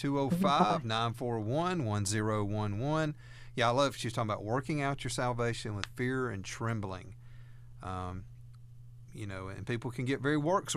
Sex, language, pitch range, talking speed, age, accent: male, English, 105-120 Hz, 135 wpm, 40-59, American